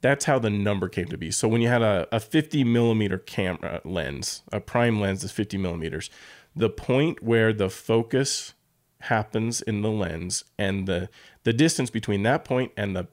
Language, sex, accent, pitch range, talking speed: English, male, American, 95-120 Hz, 185 wpm